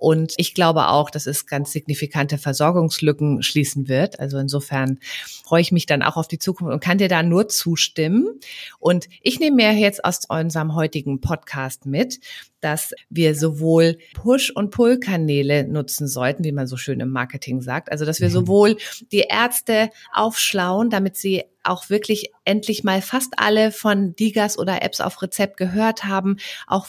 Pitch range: 145-205 Hz